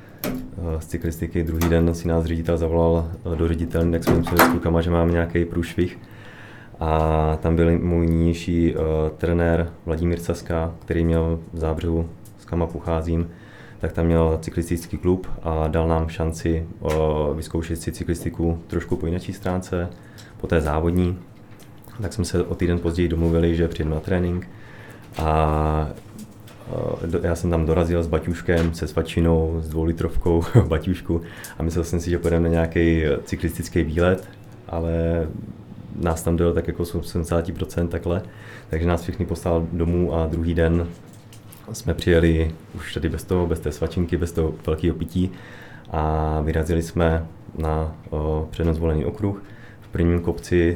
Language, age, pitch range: Czech, 20-39, 80-90 Hz